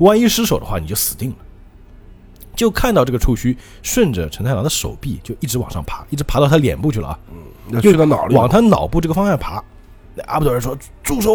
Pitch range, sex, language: 95-145 Hz, male, Chinese